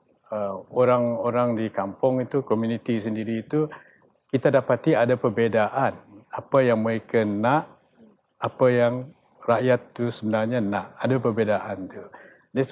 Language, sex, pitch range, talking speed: English, male, 110-130 Hz, 125 wpm